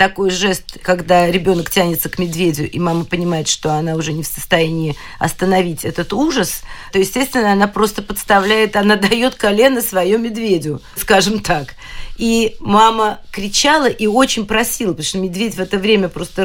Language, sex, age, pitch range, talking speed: Russian, female, 40-59, 180-215 Hz, 160 wpm